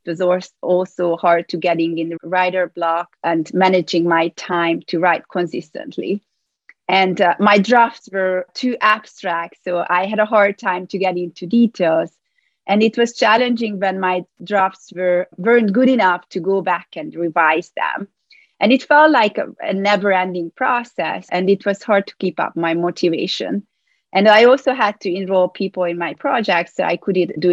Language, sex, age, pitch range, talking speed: English, female, 30-49, 175-215 Hz, 180 wpm